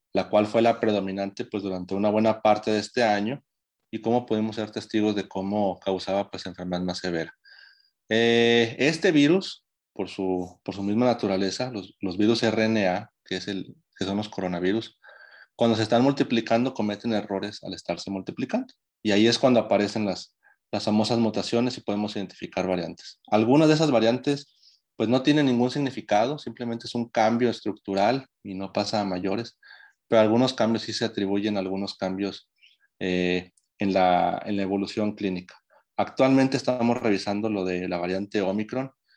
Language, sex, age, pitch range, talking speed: Spanish, male, 30-49, 100-120 Hz, 170 wpm